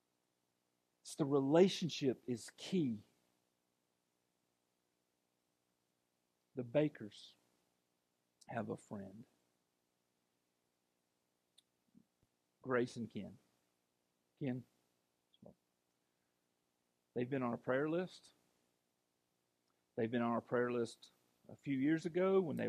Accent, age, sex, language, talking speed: American, 50-69, male, English, 85 wpm